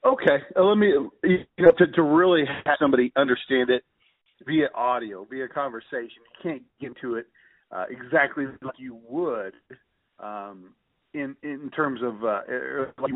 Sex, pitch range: male, 130-165 Hz